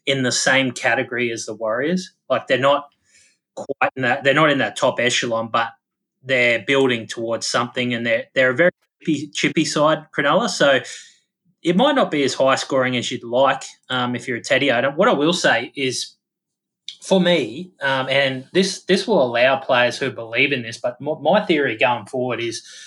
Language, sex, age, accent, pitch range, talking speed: English, male, 20-39, Australian, 120-150 Hz, 190 wpm